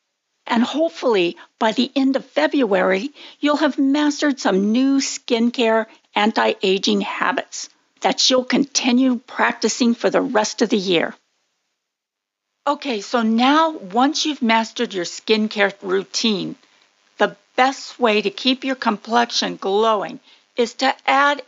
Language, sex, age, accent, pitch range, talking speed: English, female, 50-69, American, 205-270 Hz, 130 wpm